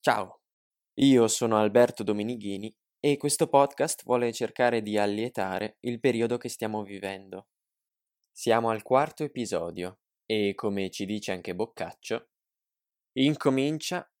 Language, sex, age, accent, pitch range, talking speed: Italian, male, 20-39, native, 100-130 Hz, 120 wpm